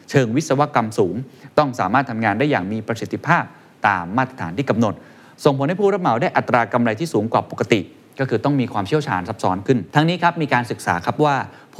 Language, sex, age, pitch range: Thai, male, 20-39, 105-140 Hz